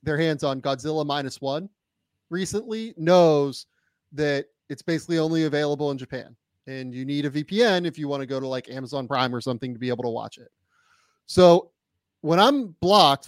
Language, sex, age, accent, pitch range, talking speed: English, male, 30-49, American, 145-190 Hz, 185 wpm